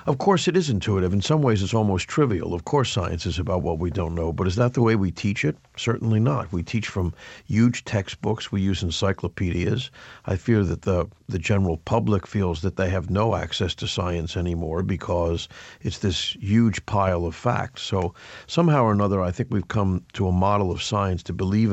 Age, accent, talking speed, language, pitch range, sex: 50-69, American, 210 wpm, English, 90-110 Hz, male